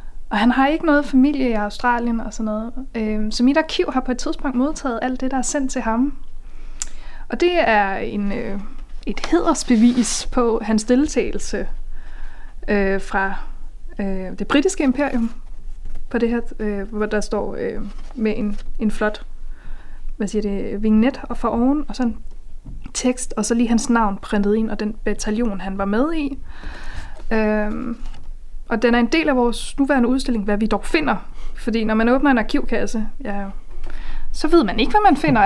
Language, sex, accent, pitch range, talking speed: Danish, female, native, 215-270 Hz, 175 wpm